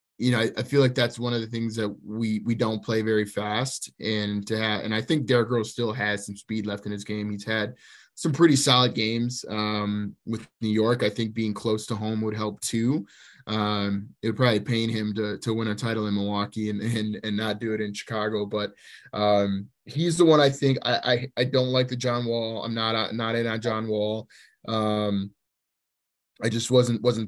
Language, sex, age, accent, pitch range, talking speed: English, male, 20-39, American, 105-125 Hz, 225 wpm